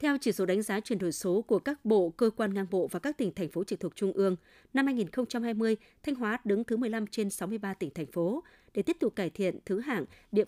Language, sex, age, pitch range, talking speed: Vietnamese, female, 20-39, 180-225 Hz, 250 wpm